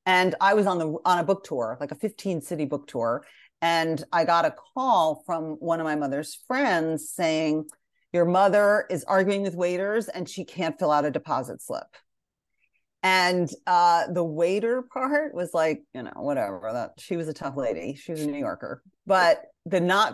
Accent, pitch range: American, 150-190 Hz